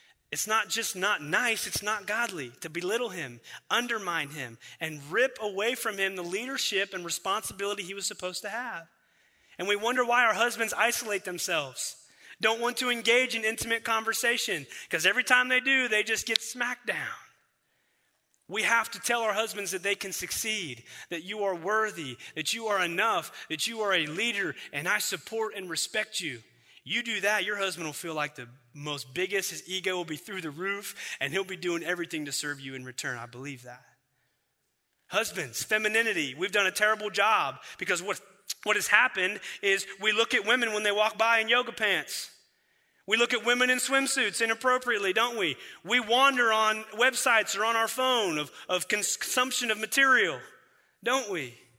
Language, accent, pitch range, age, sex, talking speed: English, American, 180-230 Hz, 30-49, male, 185 wpm